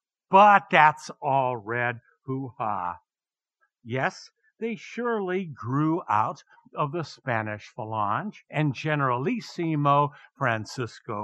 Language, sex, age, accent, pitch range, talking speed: English, male, 60-79, American, 130-180 Hz, 90 wpm